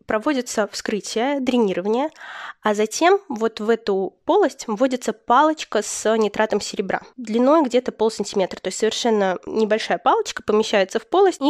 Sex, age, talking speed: female, 20-39, 135 wpm